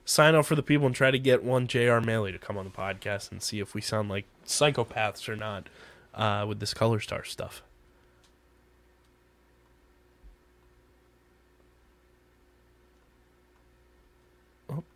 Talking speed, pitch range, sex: 130 wpm, 110-130 Hz, male